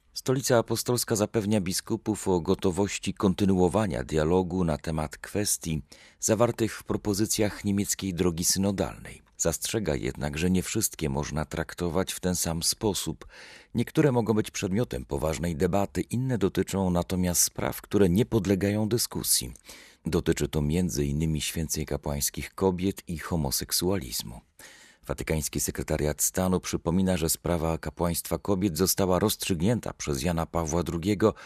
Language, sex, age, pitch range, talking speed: Polish, male, 40-59, 80-105 Hz, 125 wpm